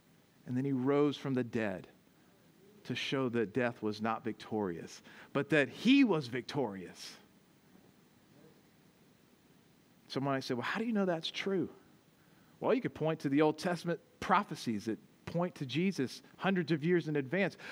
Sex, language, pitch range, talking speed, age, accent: male, English, 175-235 Hz, 165 wpm, 40-59, American